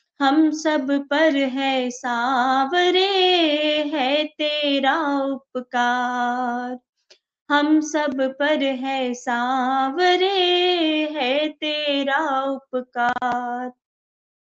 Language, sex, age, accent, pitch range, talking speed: Hindi, female, 20-39, native, 300-390 Hz, 65 wpm